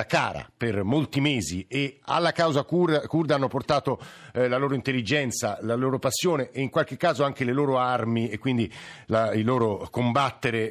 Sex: male